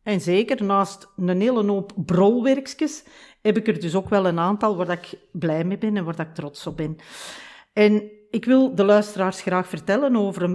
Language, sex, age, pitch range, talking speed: Dutch, female, 40-59, 175-230 Hz, 195 wpm